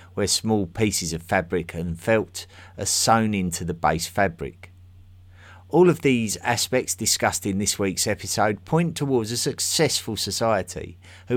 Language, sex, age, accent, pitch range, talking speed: English, male, 50-69, British, 90-120 Hz, 150 wpm